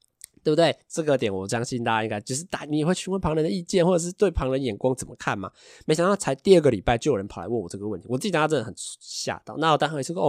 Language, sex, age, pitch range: Chinese, male, 20-39, 110-160 Hz